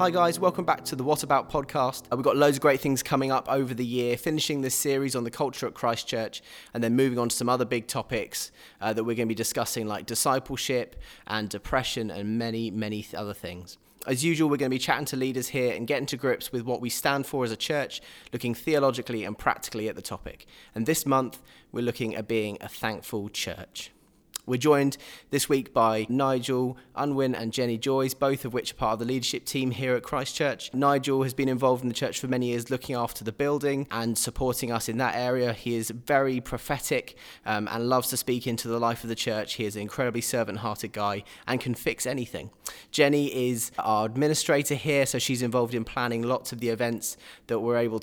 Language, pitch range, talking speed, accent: English, 115-135 Hz, 220 wpm, British